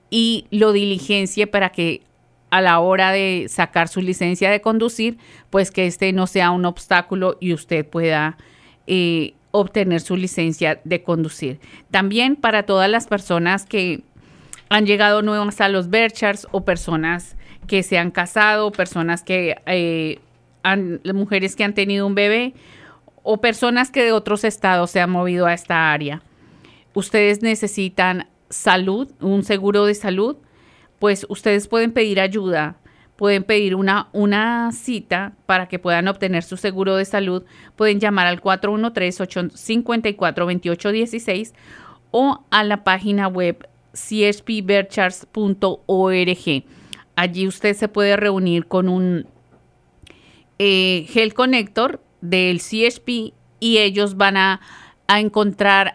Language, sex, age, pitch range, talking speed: English, female, 50-69, 180-210 Hz, 130 wpm